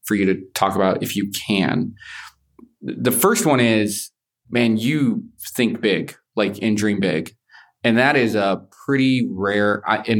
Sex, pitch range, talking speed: male, 105-125 Hz, 160 wpm